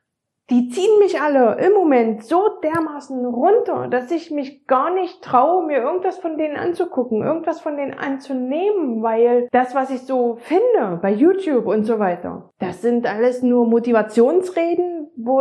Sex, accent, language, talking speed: female, German, German, 160 wpm